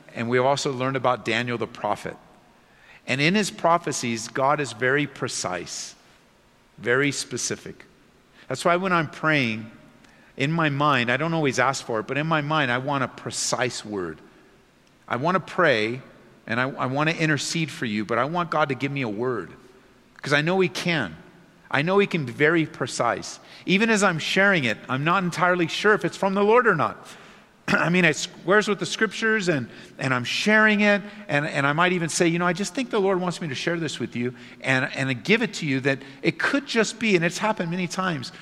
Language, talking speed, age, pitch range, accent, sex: English, 215 wpm, 50-69, 135-180 Hz, American, male